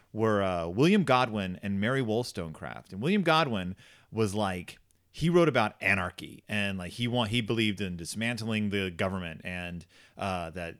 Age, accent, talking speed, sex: 30-49, American, 160 wpm, male